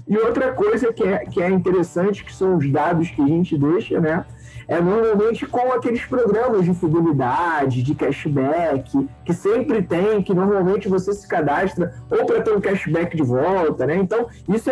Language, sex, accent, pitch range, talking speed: Portuguese, male, Brazilian, 170-235 Hz, 175 wpm